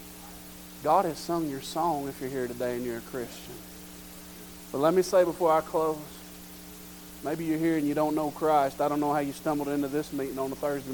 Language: English